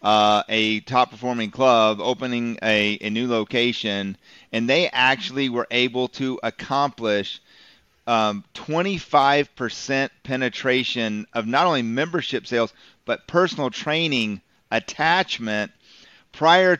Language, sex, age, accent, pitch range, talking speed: English, male, 40-59, American, 110-140 Hz, 105 wpm